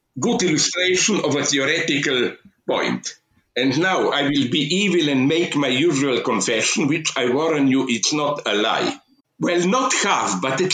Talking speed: 170 wpm